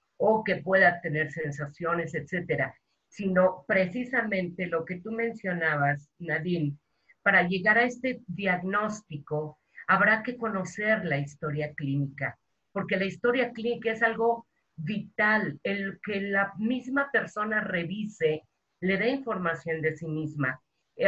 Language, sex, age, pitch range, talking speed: Spanish, female, 40-59, 165-210 Hz, 120 wpm